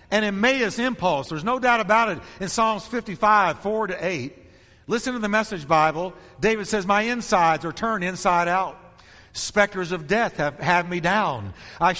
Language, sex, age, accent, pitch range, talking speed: English, male, 50-69, American, 150-235 Hz, 175 wpm